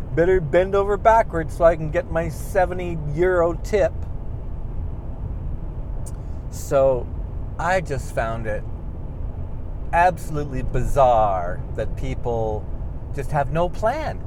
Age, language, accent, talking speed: 40-59, English, American, 105 wpm